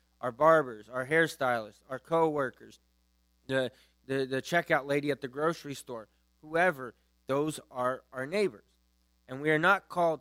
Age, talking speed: 20-39, 145 wpm